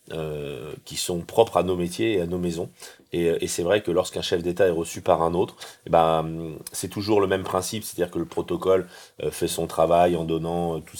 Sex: male